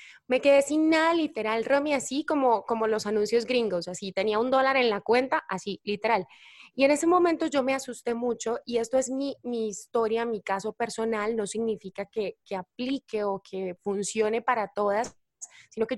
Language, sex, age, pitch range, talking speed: Spanish, female, 20-39, 205-255 Hz, 190 wpm